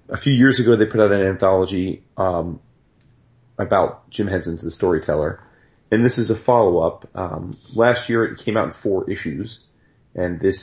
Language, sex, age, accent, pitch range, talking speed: English, male, 30-49, American, 90-115 Hz, 180 wpm